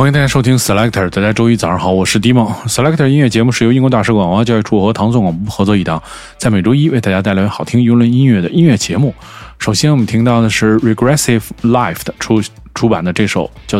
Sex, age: male, 20-39